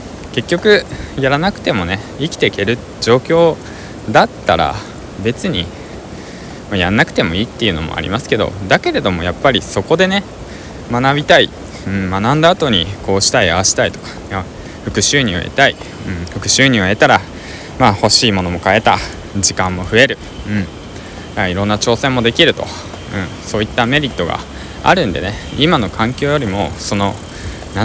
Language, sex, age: Japanese, male, 20-39